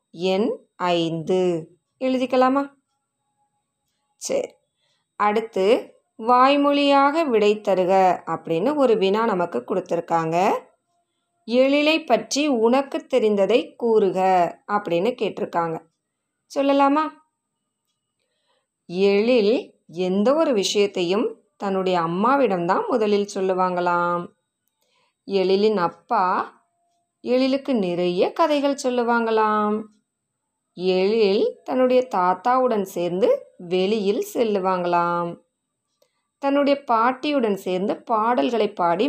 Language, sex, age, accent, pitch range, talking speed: Tamil, female, 20-39, native, 190-275 Hz, 70 wpm